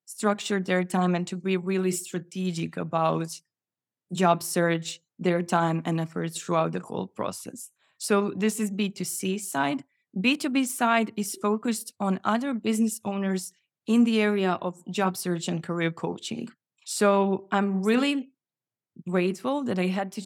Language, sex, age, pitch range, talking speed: English, female, 20-39, 175-215 Hz, 145 wpm